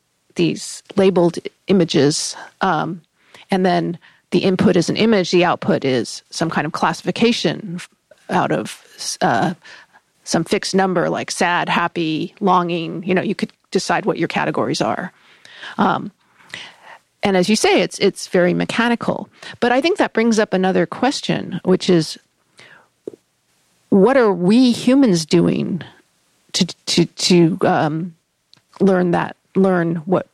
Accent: American